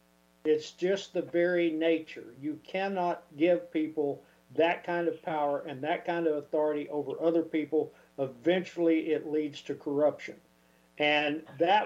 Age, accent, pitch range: 50-69, American, 145-180 Hz